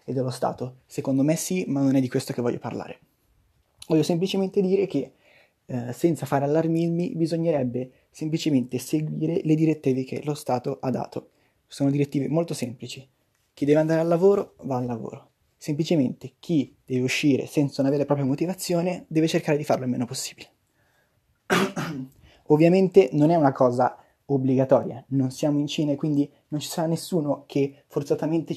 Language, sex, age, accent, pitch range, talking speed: Italian, male, 20-39, native, 130-160 Hz, 165 wpm